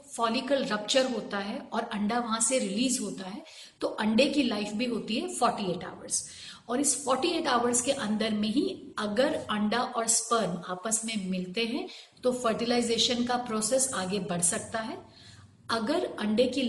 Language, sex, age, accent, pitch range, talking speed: Hindi, female, 40-59, native, 215-260 Hz, 175 wpm